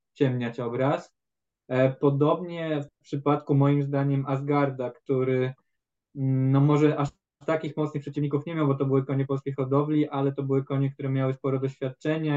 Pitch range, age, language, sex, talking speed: 130-145 Hz, 20-39, Polish, male, 150 wpm